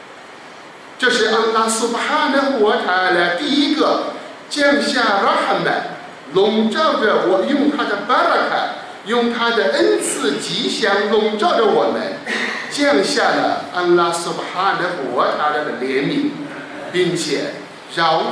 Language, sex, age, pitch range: Chinese, male, 50-69, 175-280 Hz